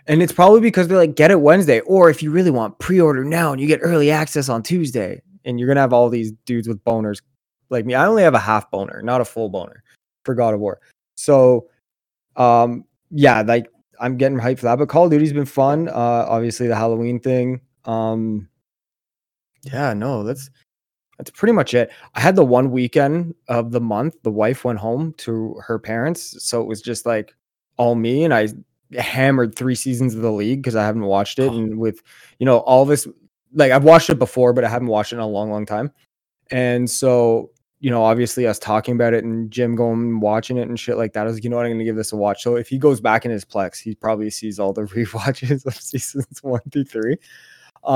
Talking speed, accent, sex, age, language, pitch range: 230 wpm, American, male, 20-39, English, 115-135 Hz